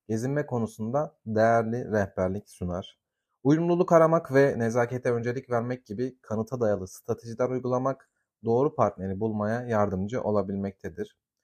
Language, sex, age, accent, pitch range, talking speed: Turkish, male, 30-49, native, 110-140 Hz, 110 wpm